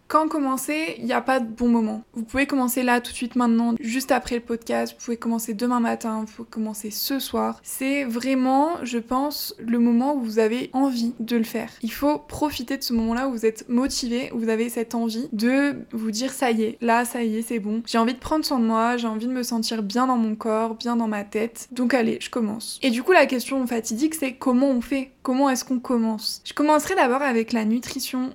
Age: 20-39